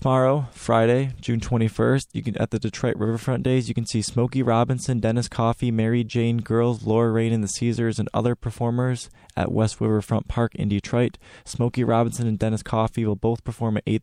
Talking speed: 195 wpm